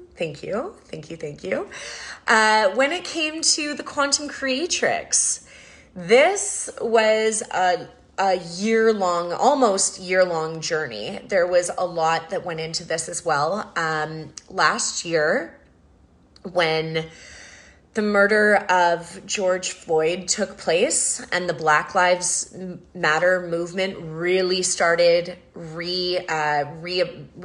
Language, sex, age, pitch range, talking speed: English, female, 30-49, 165-205 Hz, 120 wpm